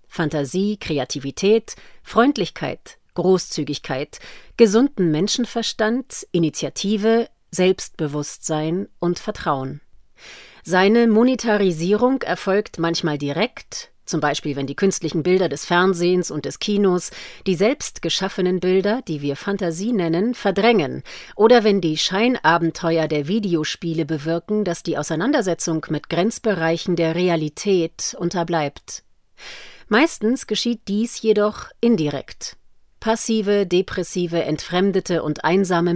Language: German